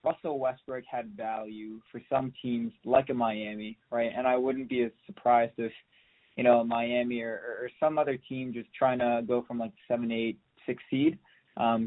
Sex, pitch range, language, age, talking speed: male, 115-130 Hz, English, 20-39, 185 wpm